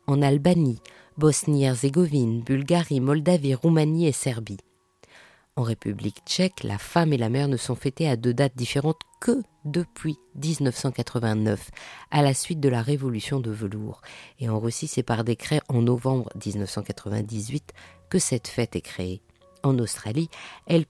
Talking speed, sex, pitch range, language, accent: 145 wpm, female, 110-150 Hz, French, French